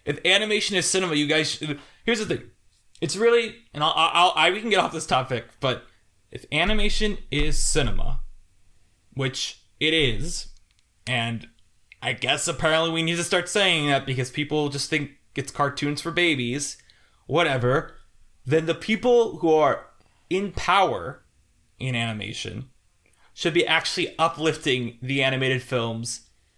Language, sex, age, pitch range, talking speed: English, male, 20-39, 120-170 Hz, 140 wpm